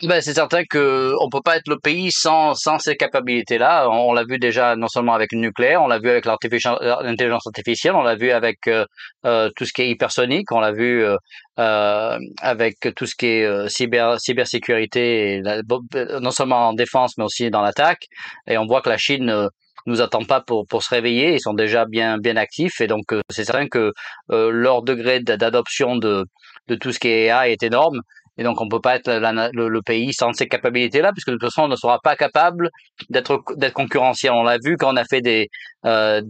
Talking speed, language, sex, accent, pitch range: 225 wpm, French, male, French, 115-130 Hz